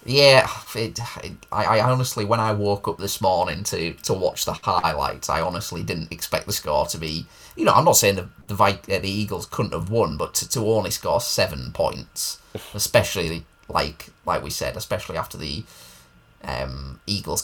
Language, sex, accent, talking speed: English, male, British, 185 wpm